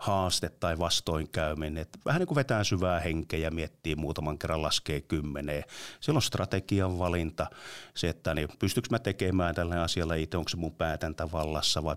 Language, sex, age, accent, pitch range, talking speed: Finnish, male, 30-49, native, 80-105 Hz, 170 wpm